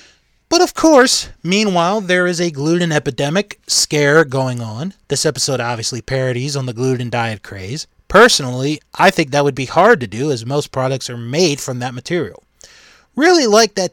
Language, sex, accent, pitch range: English, male, American, 130-180 Hz